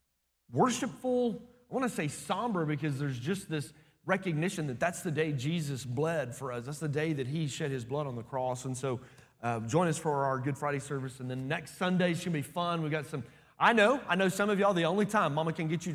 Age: 30-49